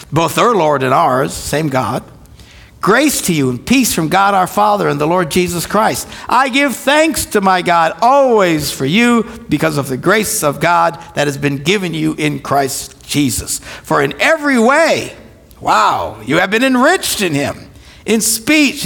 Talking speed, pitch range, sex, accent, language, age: 180 wpm, 145-225 Hz, male, American, English, 60-79